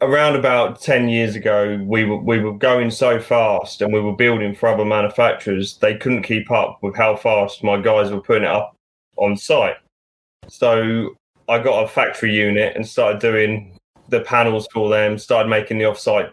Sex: male